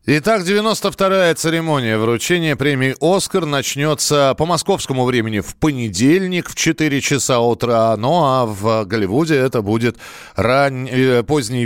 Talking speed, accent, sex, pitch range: 120 wpm, native, male, 125-165 Hz